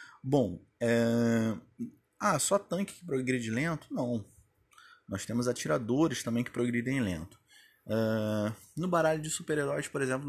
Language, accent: Portuguese, Brazilian